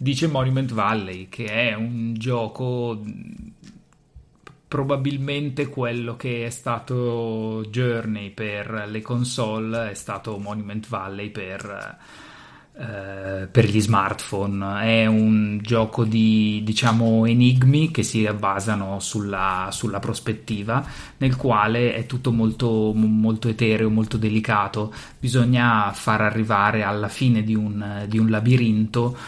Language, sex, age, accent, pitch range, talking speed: Italian, male, 30-49, native, 105-120 Hz, 115 wpm